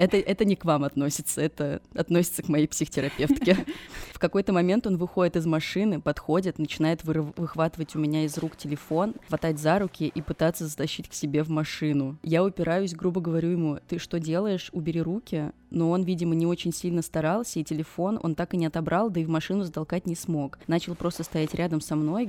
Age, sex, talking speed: 20-39, female, 195 wpm